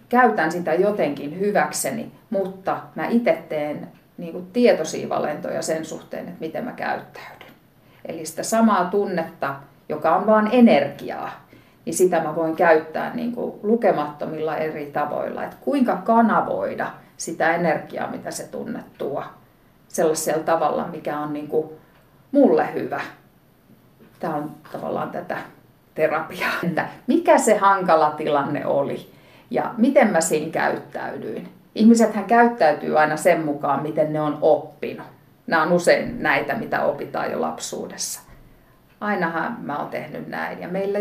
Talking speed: 125 wpm